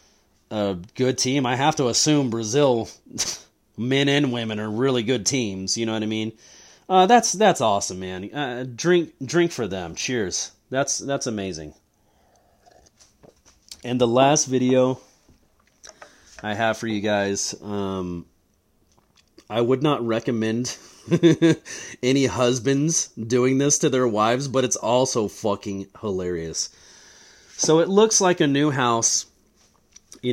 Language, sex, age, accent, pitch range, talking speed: English, male, 30-49, American, 110-155 Hz, 135 wpm